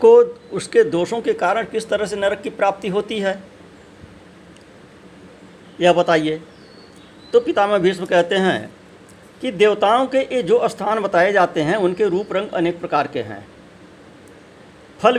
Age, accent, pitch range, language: 50-69, native, 160-200 Hz, Hindi